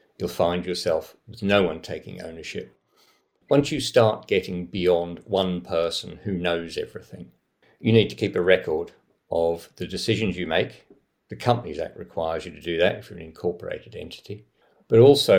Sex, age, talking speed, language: male, 50-69, 170 wpm, English